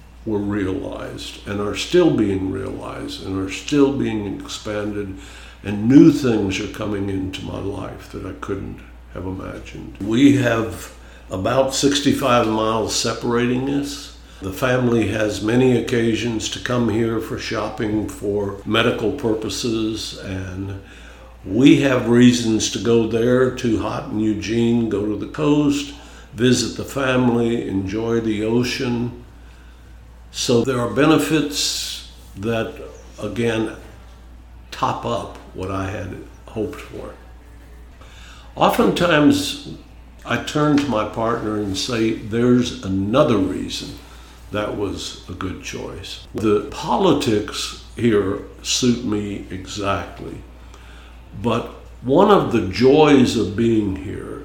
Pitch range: 95-120 Hz